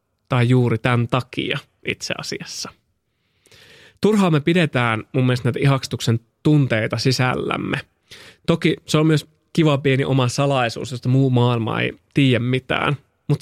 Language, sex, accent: Finnish, male, native